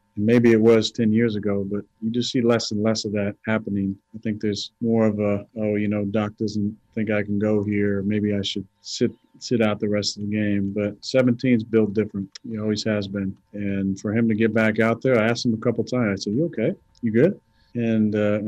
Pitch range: 105-115 Hz